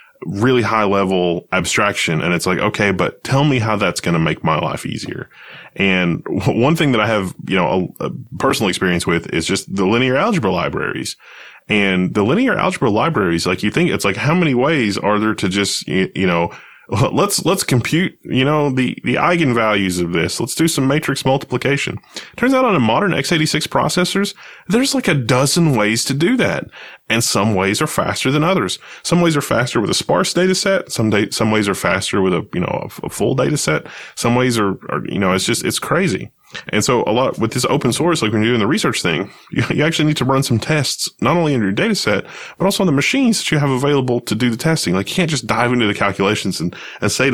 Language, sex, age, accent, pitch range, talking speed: English, male, 20-39, American, 110-165 Hz, 235 wpm